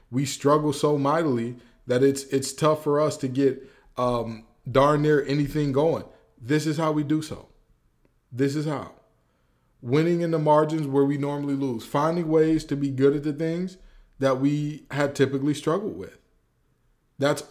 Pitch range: 125-150 Hz